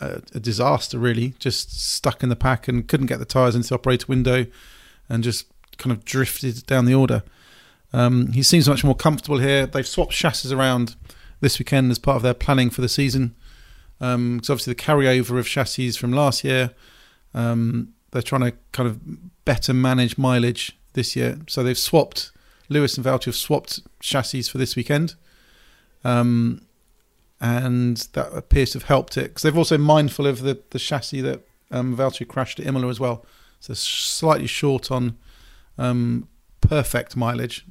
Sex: male